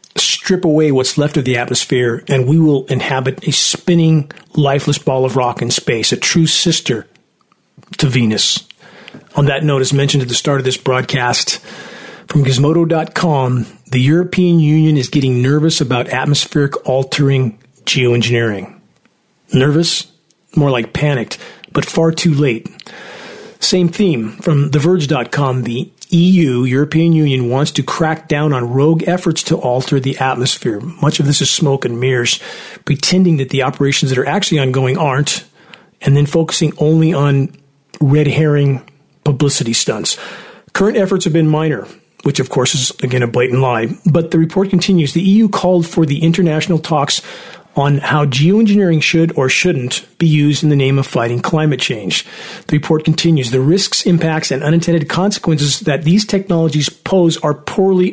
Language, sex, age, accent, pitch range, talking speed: English, male, 40-59, American, 135-170 Hz, 160 wpm